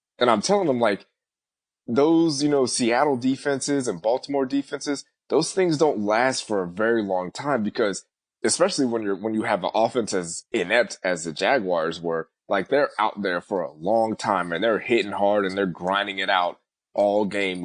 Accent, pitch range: American, 105-140 Hz